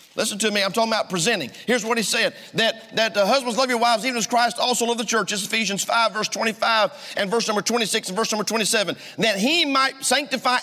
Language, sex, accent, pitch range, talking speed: English, male, American, 220-275 Hz, 245 wpm